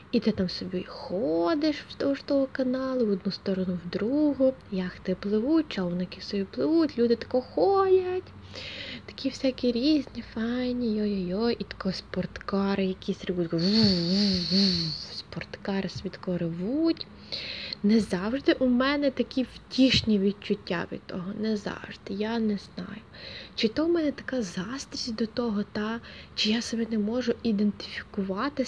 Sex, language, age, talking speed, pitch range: female, Ukrainian, 20-39, 135 wpm, 195-245 Hz